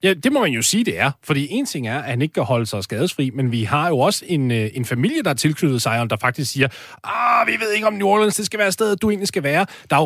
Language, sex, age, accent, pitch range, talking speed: Danish, male, 30-49, native, 125-190 Hz, 310 wpm